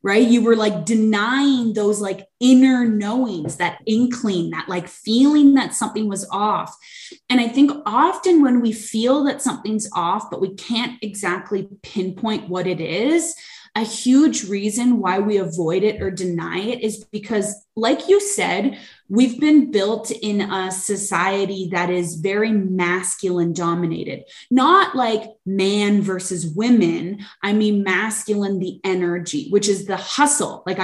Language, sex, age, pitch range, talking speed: English, female, 20-39, 190-245 Hz, 150 wpm